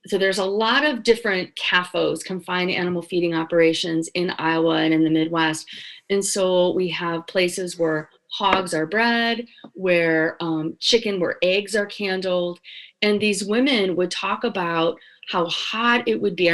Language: English